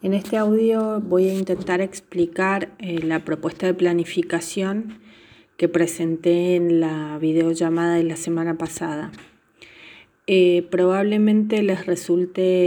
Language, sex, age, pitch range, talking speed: Spanish, female, 30-49, 170-210 Hz, 120 wpm